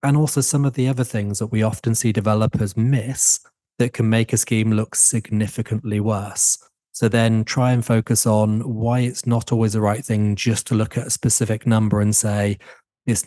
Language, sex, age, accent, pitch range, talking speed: English, male, 30-49, British, 105-120 Hz, 200 wpm